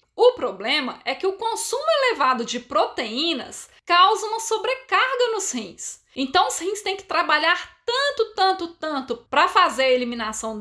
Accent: Brazilian